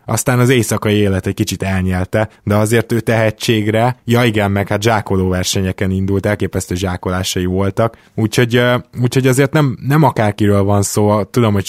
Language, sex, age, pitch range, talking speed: Hungarian, male, 20-39, 95-115 Hz, 160 wpm